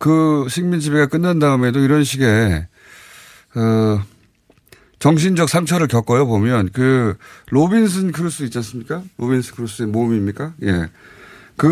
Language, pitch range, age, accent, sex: Korean, 110-155 Hz, 30-49, native, male